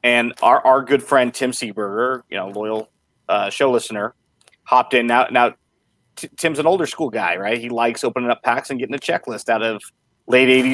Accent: American